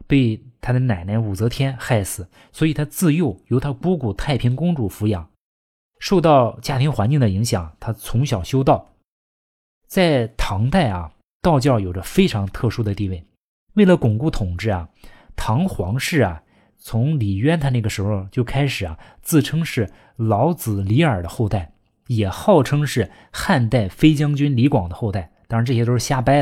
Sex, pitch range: male, 100-140 Hz